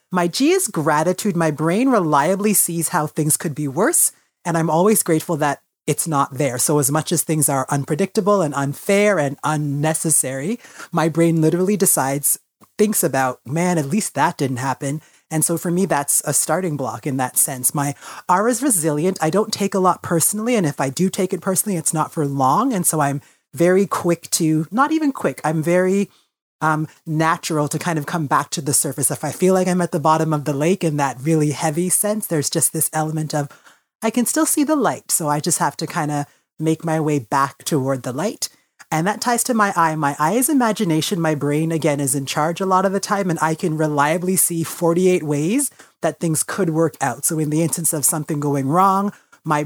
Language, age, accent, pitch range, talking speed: English, 30-49, American, 150-185 Hz, 215 wpm